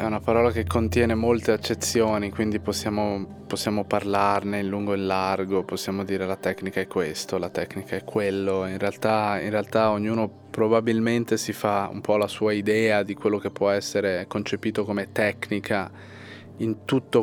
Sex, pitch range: male, 100-115 Hz